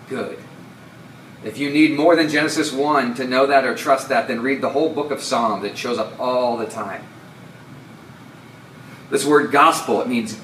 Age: 30-49